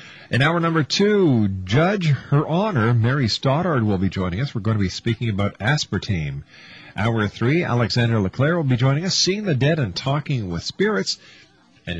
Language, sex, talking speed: English, male, 180 wpm